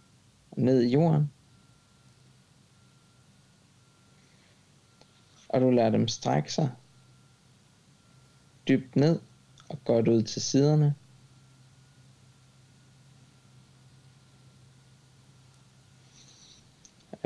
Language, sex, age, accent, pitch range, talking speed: Danish, male, 60-79, native, 125-140 Hz, 60 wpm